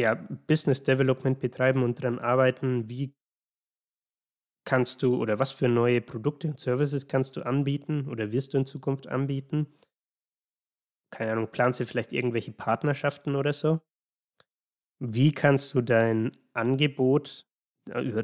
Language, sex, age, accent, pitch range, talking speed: German, male, 20-39, German, 120-140 Hz, 135 wpm